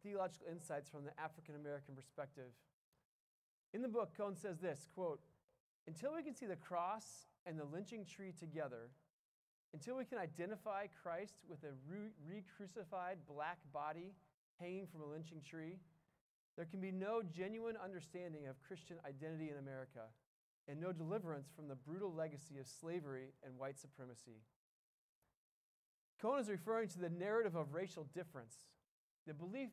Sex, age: male, 30-49